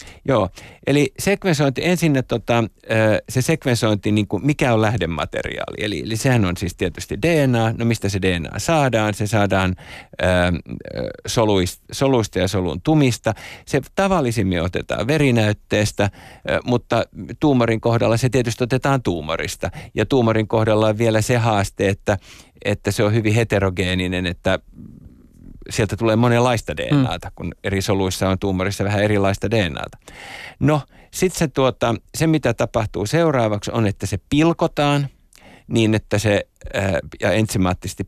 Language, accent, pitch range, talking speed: Finnish, native, 95-120 Hz, 130 wpm